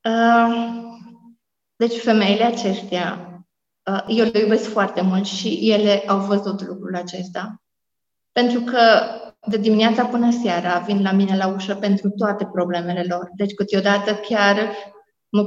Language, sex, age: Romanian, female, 30-49